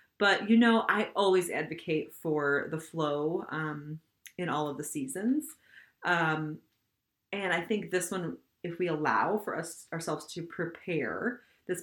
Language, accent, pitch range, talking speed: English, American, 155-210 Hz, 150 wpm